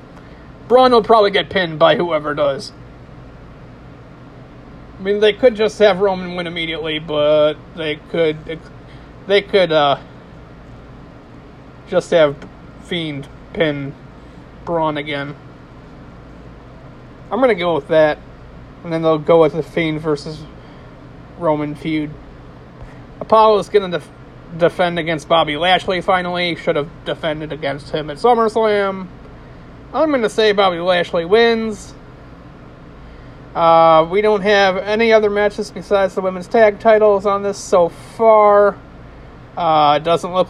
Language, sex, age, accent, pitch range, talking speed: English, male, 30-49, American, 150-195 Hz, 125 wpm